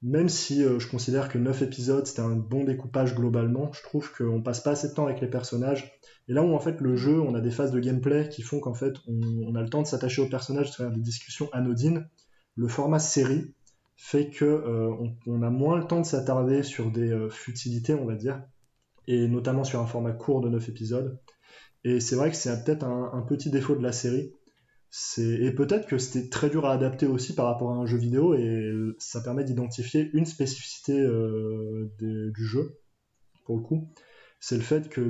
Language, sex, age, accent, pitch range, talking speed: French, male, 20-39, French, 120-145 Hz, 225 wpm